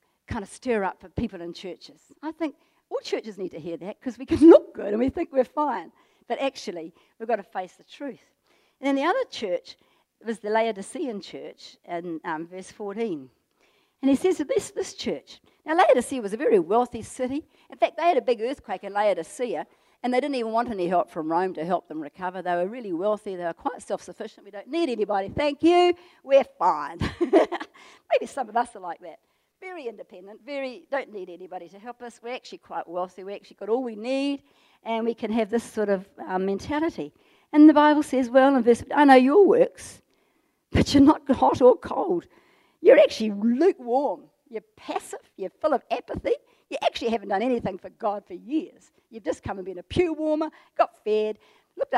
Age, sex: 50-69, female